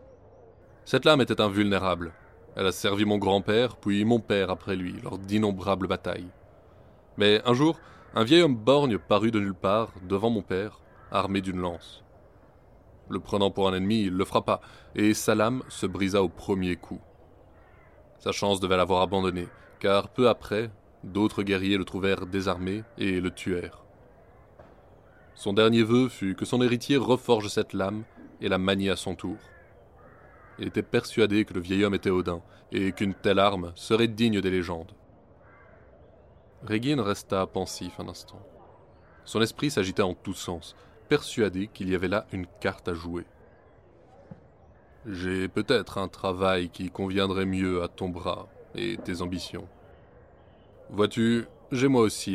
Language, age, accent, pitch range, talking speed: French, 20-39, French, 95-110 Hz, 155 wpm